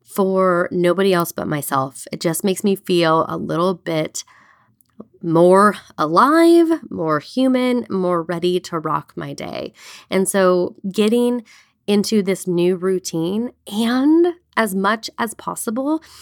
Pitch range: 160-205 Hz